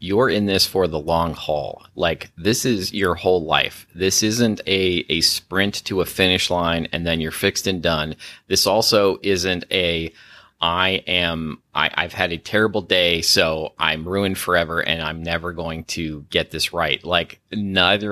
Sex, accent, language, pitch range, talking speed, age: male, American, English, 85-105 Hz, 180 wpm, 30-49